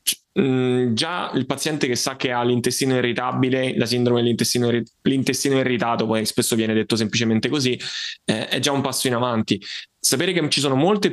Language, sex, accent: Italian, male, native